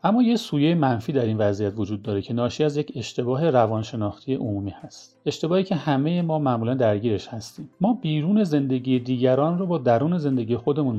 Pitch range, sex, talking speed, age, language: 115-150 Hz, male, 180 wpm, 40-59, Persian